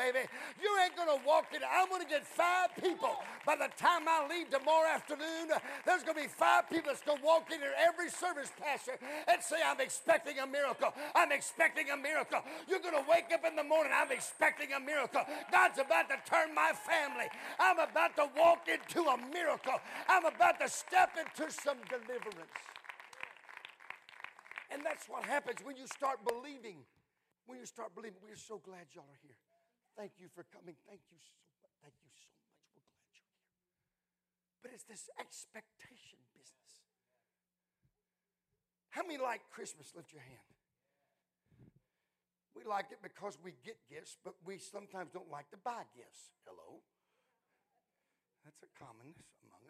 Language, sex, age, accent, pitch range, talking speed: English, male, 50-69, American, 205-325 Hz, 175 wpm